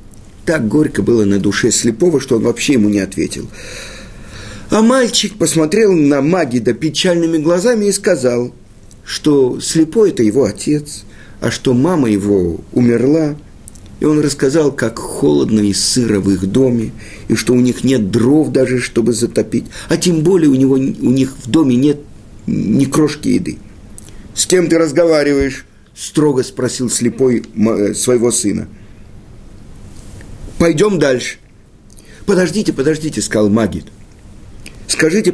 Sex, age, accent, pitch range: male, 50-69, native, 105-150 Hz